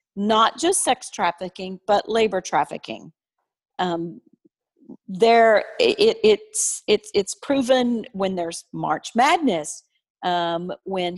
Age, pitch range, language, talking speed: 40-59, 185-255 Hz, English, 115 wpm